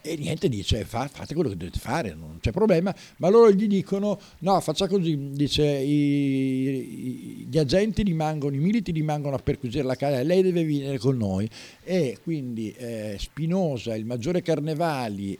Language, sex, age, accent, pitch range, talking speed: Italian, male, 50-69, native, 115-160 Hz, 160 wpm